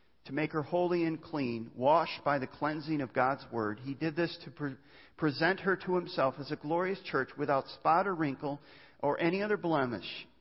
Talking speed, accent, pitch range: 195 wpm, American, 140-190 Hz